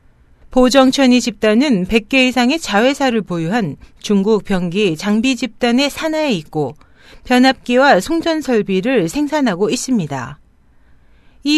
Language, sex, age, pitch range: Korean, female, 40-59, 185-265 Hz